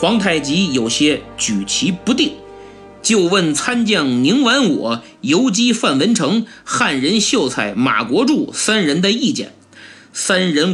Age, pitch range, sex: 50-69, 180-280 Hz, male